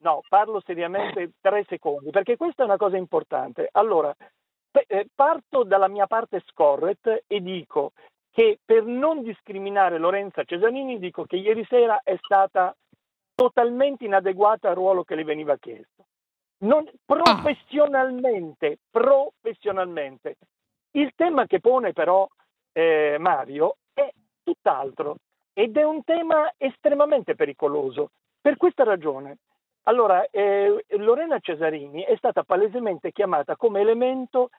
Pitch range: 185-280 Hz